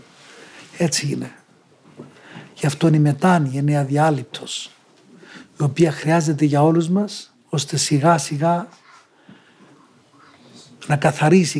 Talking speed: 110 wpm